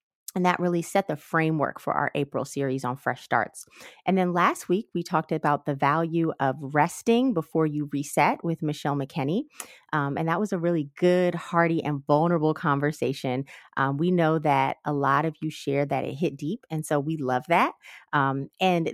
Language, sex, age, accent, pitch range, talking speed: English, female, 30-49, American, 150-200 Hz, 195 wpm